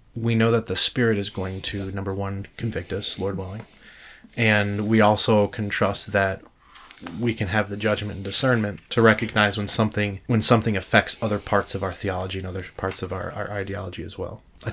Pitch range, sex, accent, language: 95-110 Hz, male, American, English